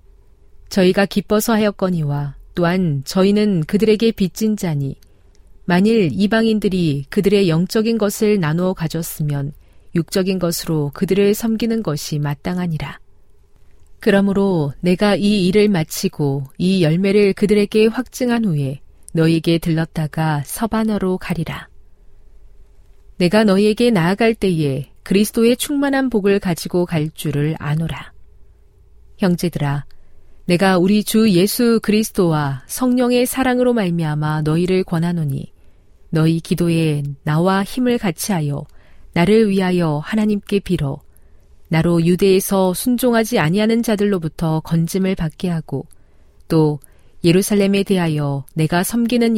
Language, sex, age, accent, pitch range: Korean, female, 40-59, native, 150-205 Hz